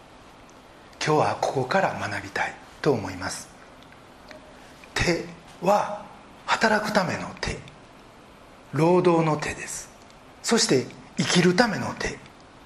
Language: Japanese